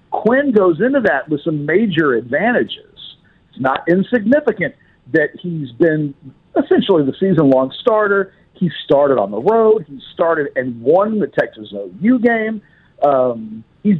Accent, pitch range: American, 145-195 Hz